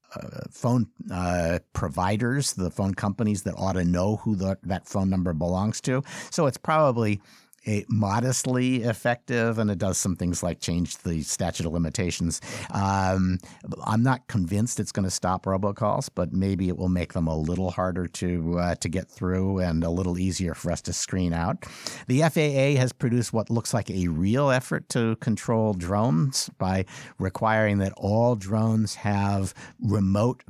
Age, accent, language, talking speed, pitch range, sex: 50-69, American, English, 165 wpm, 95-115 Hz, male